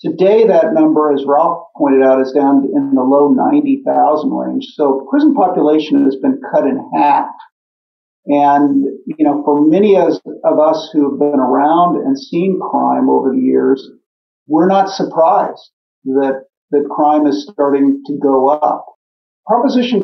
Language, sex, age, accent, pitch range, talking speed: English, male, 50-69, American, 145-220 Hz, 155 wpm